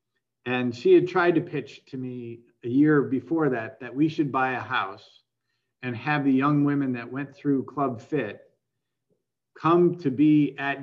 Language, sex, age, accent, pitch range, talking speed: English, male, 50-69, American, 125-150 Hz, 175 wpm